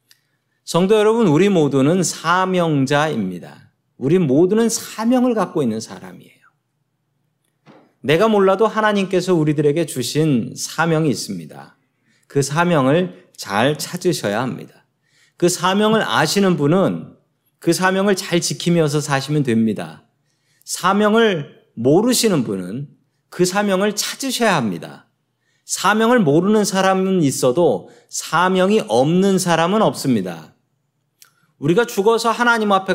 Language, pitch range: Korean, 140-190 Hz